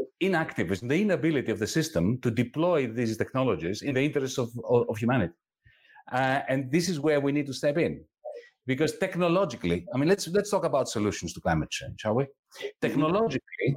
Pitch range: 115-160 Hz